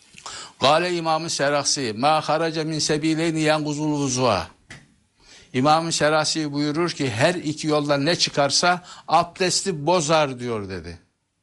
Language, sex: Turkish, male